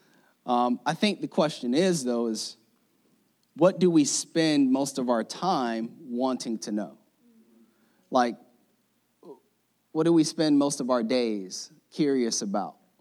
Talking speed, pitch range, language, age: 140 wpm, 115-150 Hz, English, 30-49